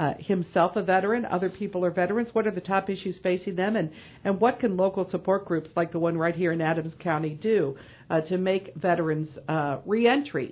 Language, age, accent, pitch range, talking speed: English, 50-69, American, 155-205 Hz, 210 wpm